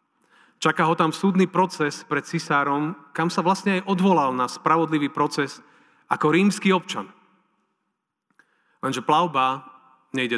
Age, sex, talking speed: 40-59, male, 120 wpm